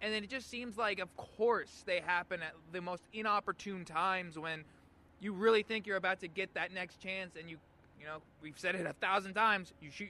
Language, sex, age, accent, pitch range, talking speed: English, male, 20-39, American, 155-210 Hz, 225 wpm